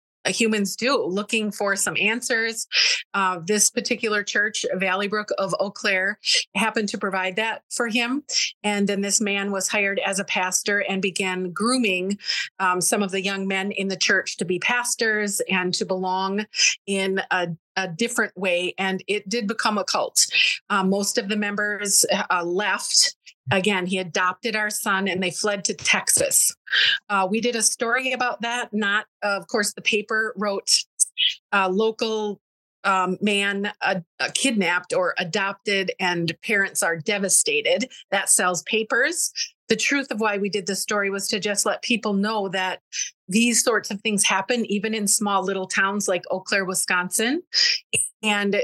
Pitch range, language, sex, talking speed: 195-225 Hz, English, female, 170 wpm